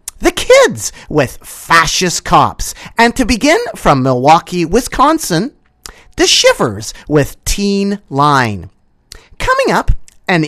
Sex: male